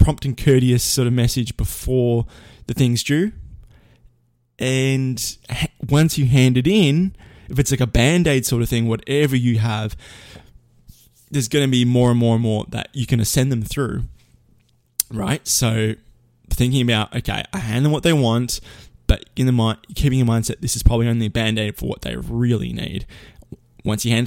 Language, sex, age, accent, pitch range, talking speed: English, male, 20-39, Australian, 110-130 Hz, 190 wpm